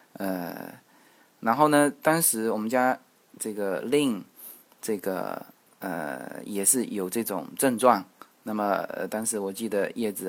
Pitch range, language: 115-160 Hz, Chinese